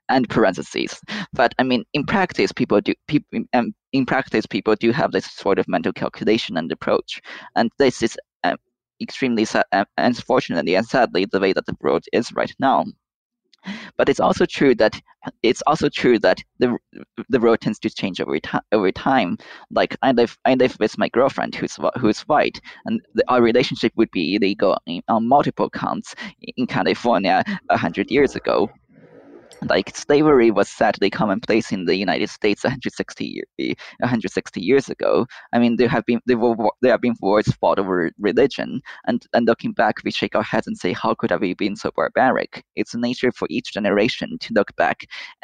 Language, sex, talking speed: English, male, 190 wpm